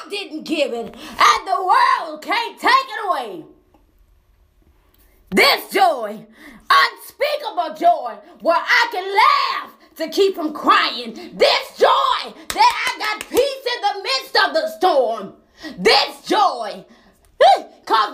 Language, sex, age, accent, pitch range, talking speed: English, female, 20-39, American, 245-380 Hz, 120 wpm